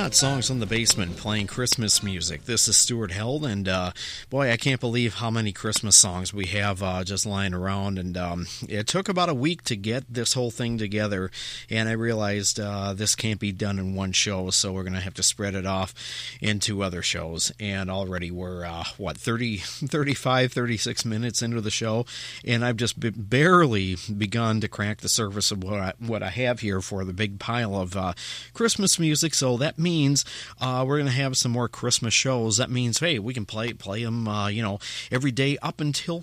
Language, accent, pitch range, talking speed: English, American, 100-130 Hz, 205 wpm